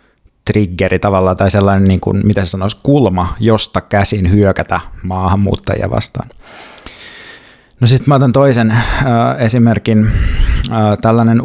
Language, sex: Finnish, male